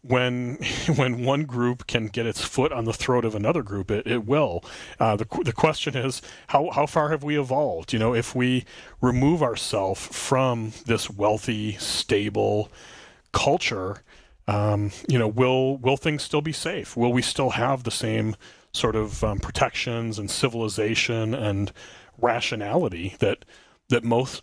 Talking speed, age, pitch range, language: 160 wpm, 30-49, 110-135 Hz, English